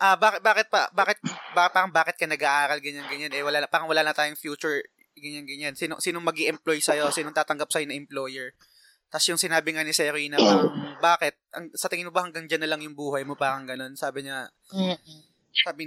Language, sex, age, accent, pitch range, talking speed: Filipino, male, 20-39, native, 155-205 Hz, 220 wpm